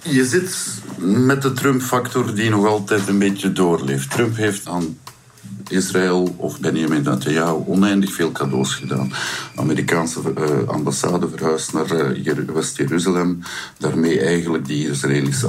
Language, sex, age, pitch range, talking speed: Dutch, male, 50-69, 75-100 Hz, 125 wpm